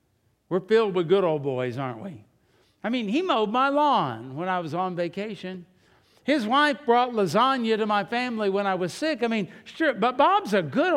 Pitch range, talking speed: 155-220 Hz, 200 wpm